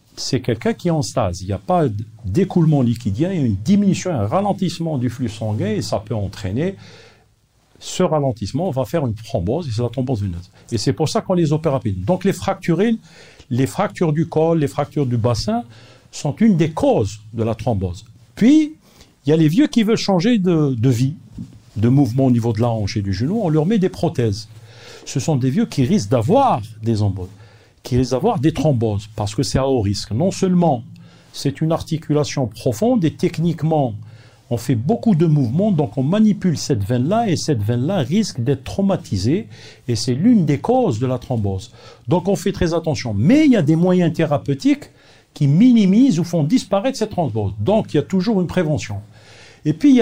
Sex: male